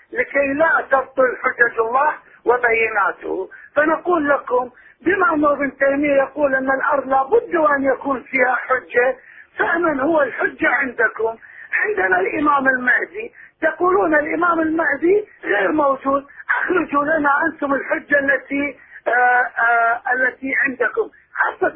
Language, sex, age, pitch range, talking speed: Arabic, male, 40-59, 260-320 Hz, 115 wpm